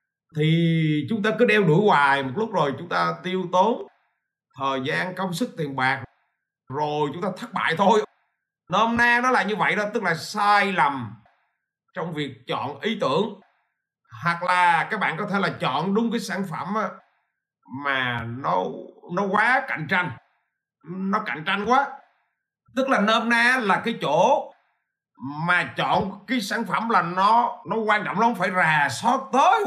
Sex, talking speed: male, 175 wpm